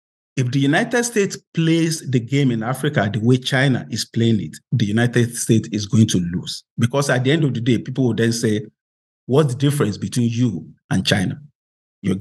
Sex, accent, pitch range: male, Nigerian, 125-185 Hz